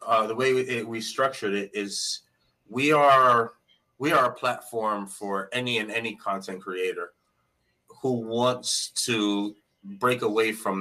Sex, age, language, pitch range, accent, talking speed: male, 30-49, English, 100-150 Hz, American, 145 wpm